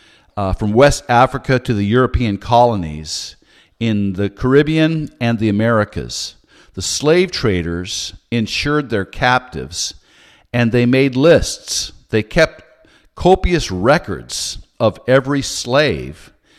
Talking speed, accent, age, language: 110 wpm, American, 50-69, English